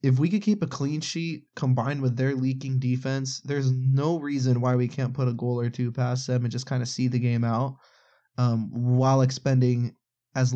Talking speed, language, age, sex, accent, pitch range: 210 wpm, English, 20-39, male, American, 120-140 Hz